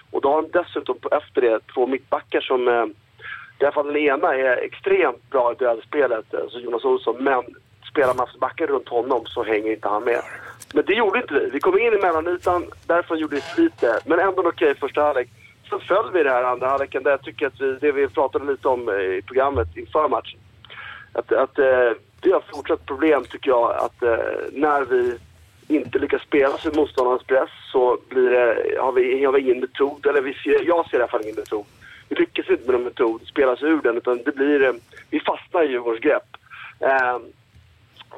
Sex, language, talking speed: male, English, 205 wpm